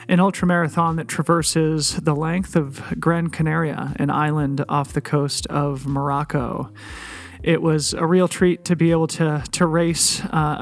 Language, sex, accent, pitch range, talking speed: English, male, American, 140-160 Hz, 160 wpm